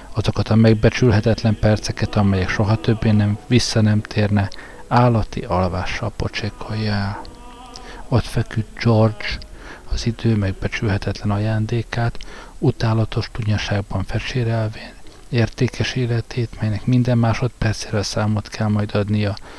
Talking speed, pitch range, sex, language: 105 wpm, 100-115 Hz, male, Hungarian